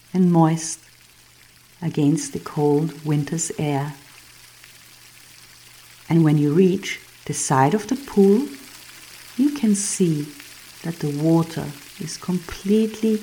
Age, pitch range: 50-69, 145-170 Hz